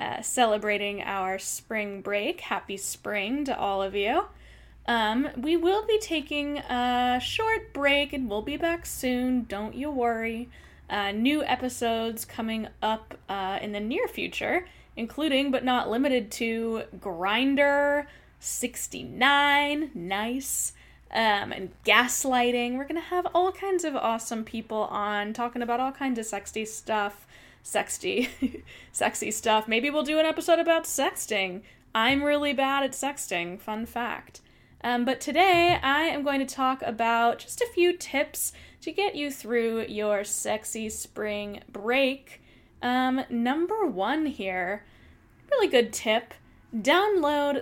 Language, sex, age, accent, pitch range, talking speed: English, female, 10-29, American, 215-285 Hz, 140 wpm